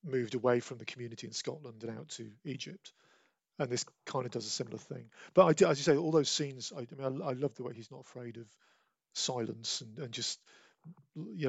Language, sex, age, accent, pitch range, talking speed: English, male, 40-59, British, 115-145 Hz, 235 wpm